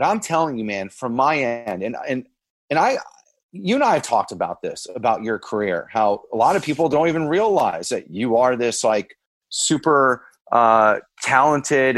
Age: 30-49